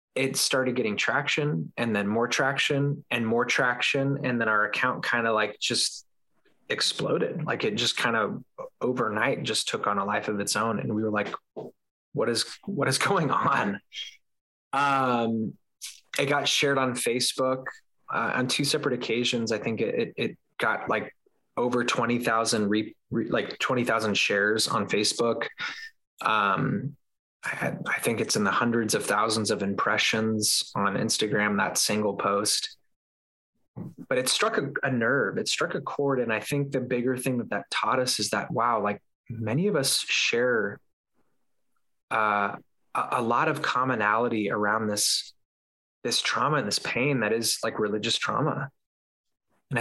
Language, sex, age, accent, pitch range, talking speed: English, male, 20-39, American, 110-140 Hz, 160 wpm